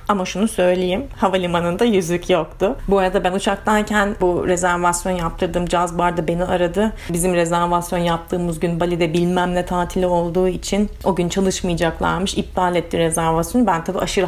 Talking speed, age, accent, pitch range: 150 wpm, 30-49, native, 175-195 Hz